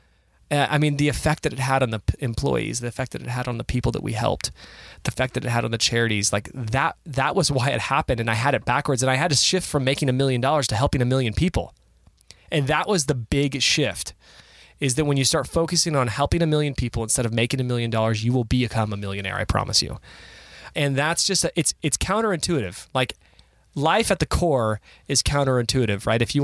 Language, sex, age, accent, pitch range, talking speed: English, male, 20-39, American, 110-145 Hz, 235 wpm